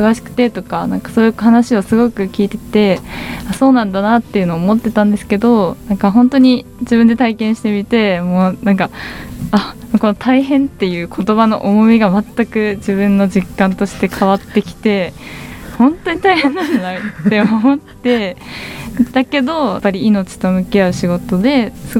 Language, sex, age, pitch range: Japanese, female, 20-39, 195-235 Hz